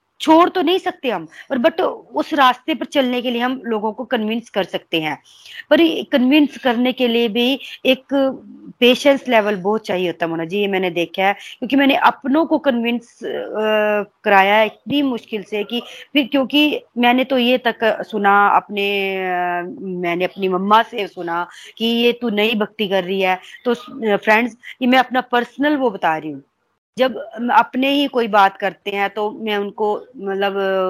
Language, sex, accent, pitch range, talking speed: Hindi, female, native, 195-255 Hz, 180 wpm